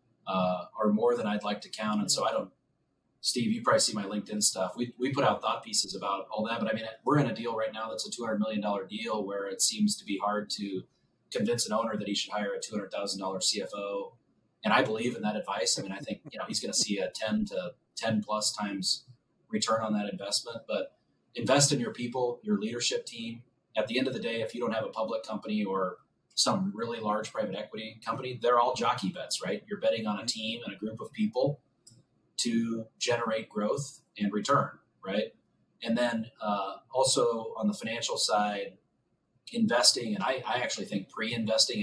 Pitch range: 105-145 Hz